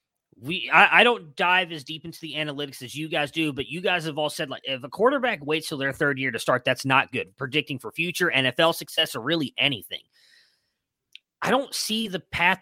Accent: American